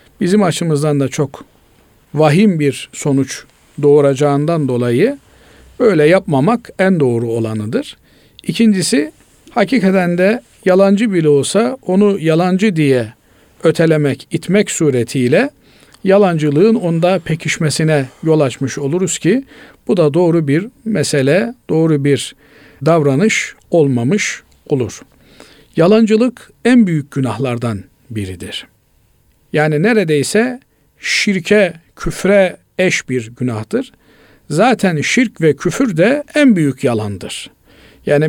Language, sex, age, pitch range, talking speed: Turkish, male, 50-69, 140-195 Hz, 100 wpm